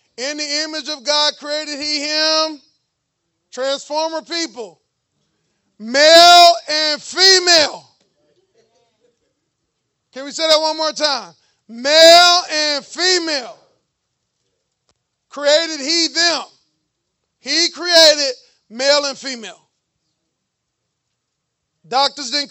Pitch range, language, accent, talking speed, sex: 240-310 Hz, English, American, 90 wpm, male